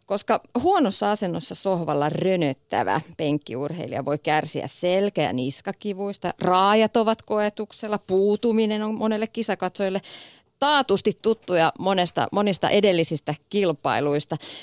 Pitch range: 150-210 Hz